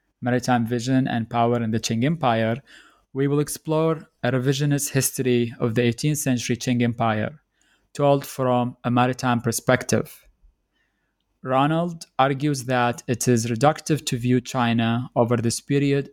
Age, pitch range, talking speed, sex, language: 20-39, 120-135 Hz, 140 wpm, male, English